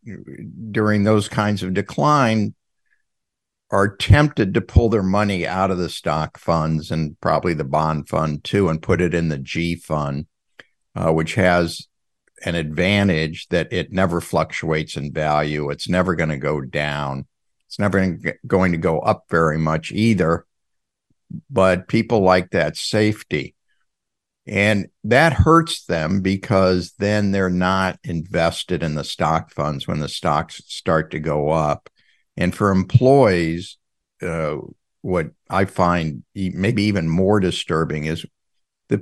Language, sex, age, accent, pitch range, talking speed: English, male, 60-79, American, 80-100 Hz, 145 wpm